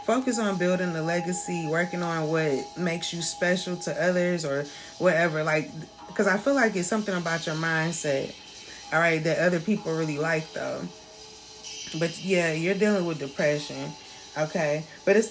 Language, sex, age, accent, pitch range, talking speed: English, female, 20-39, American, 165-215 Hz, 165 wpm